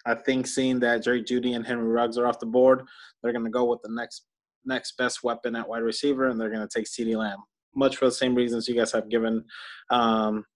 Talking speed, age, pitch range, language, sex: 245 wpm, 20-39, 115-130 Hz, English, male